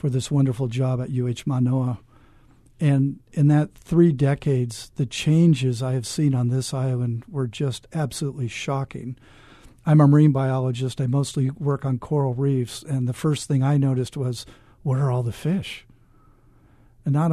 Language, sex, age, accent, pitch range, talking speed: English, male, 50-69, American, 125-150 Hz, 165 wpm